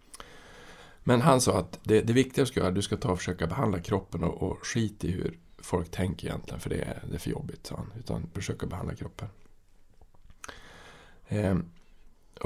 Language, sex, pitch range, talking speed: Swedish, male, 90-115 Hz, 195 wpm